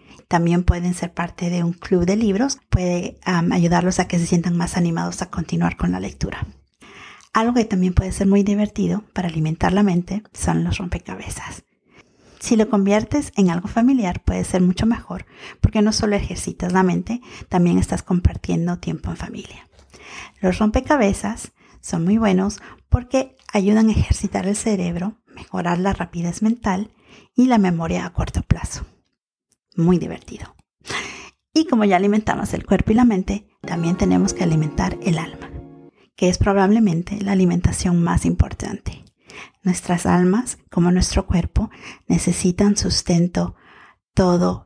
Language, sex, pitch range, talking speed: English, female, 165-205 Hz, 150 wpm